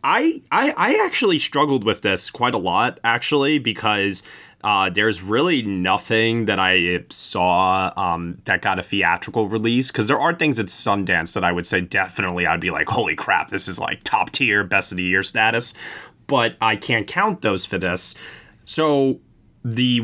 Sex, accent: male, American